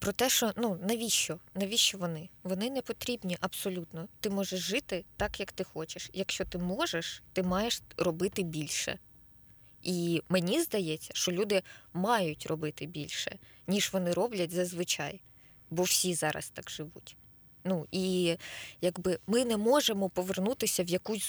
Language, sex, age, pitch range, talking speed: Ukrainian, female, 20-39, 165-210 Hz, 145 wpm